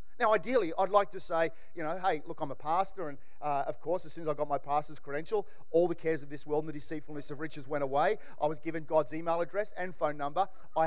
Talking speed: 265 wpm